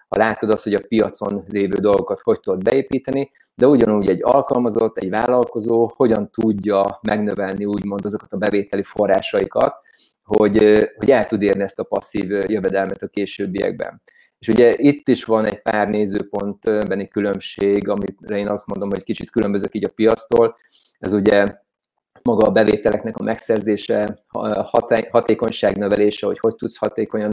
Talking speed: 150 wpm